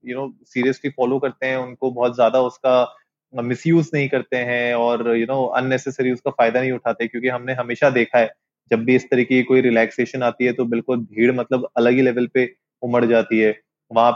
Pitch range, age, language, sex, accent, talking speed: 120-135 Hz, 20-39, Hindi, male, native, 200 wpm